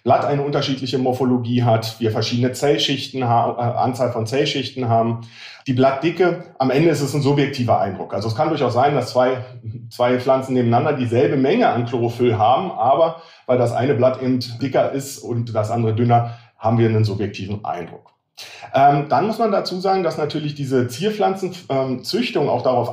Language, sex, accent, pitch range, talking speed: German, male, German, 120-140 Hz, 175 wpm